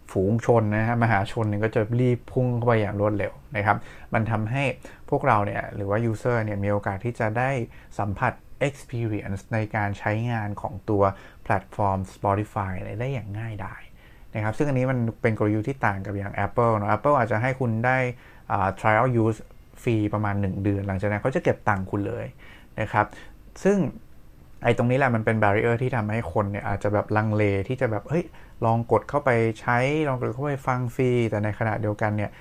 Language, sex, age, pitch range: English, male, 20-39, 105-130 Hz